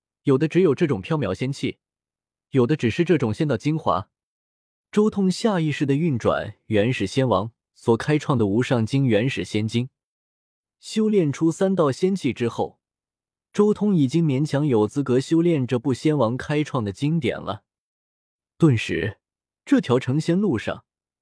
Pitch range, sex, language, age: 115-165 Hz, male, Chinese, 20-39